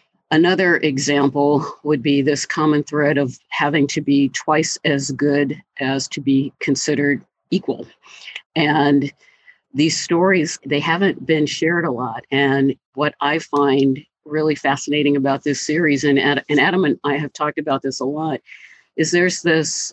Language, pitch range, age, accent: English, 140-155 Hz, 50-69, American